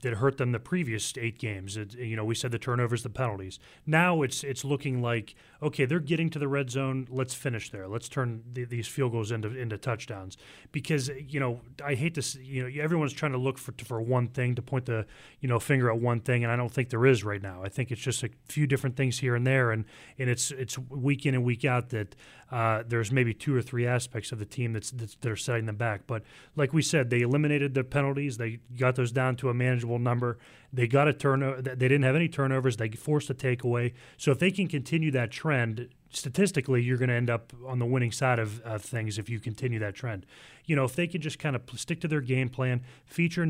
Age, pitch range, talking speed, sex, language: 30-49, 120-140 Hz, 250 wpm, male, English